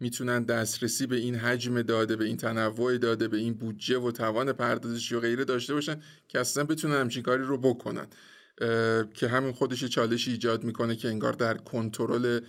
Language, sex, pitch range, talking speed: Persian, male, 115-130 Hz, 180 wpm